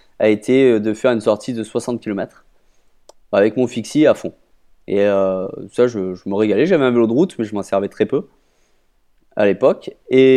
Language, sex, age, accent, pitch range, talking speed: French, male, 20-39, French, 105-125 Hz, 205 wpm